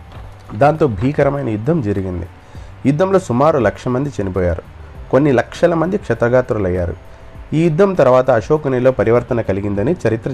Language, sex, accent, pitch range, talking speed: Telugu, male, native, 95-130 Hz, 115 wpm